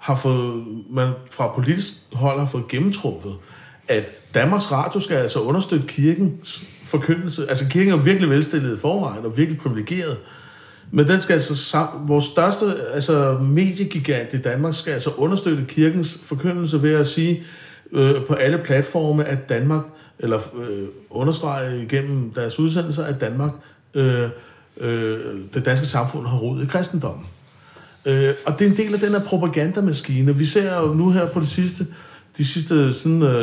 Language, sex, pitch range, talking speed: Danish, male, 130-160 Hz, 160 wpm